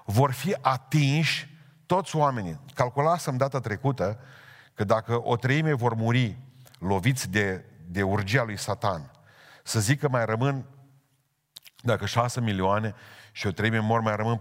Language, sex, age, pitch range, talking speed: Romanian, male, 50-69, 105-140 Hz, 140 wpm